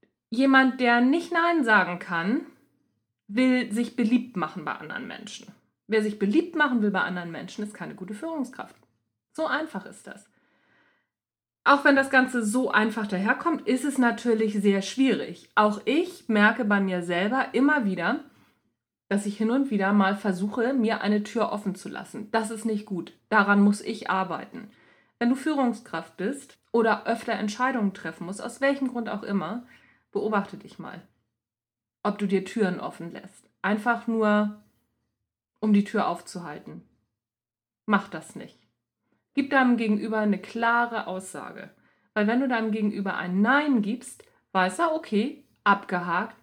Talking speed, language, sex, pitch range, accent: 155 wpm, German, female, 190-245 Hz, German